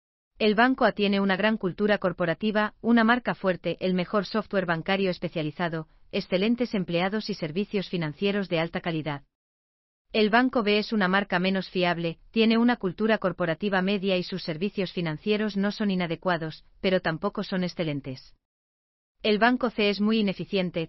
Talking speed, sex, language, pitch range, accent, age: 155 wpm, female, German, 165-210 Hz, Spanish, 40-59